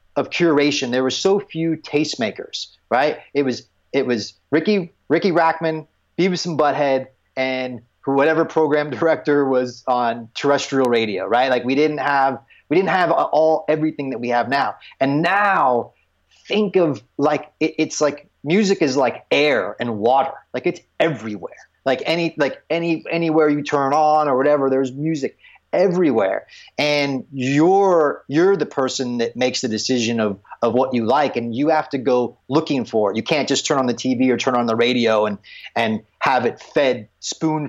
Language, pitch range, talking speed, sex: English, 125-155 Hz, 175 wpm, male